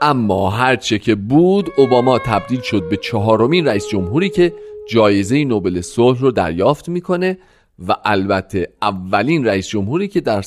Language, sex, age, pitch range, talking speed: Persian, male, 40-59, 100-145 Hz, 145 wpm